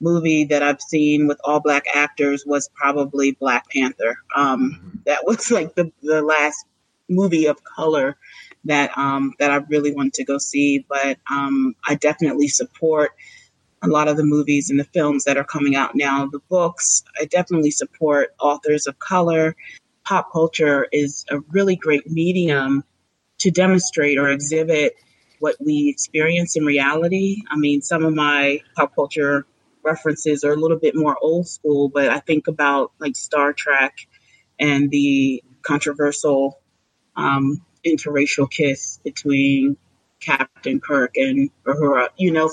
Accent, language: American, English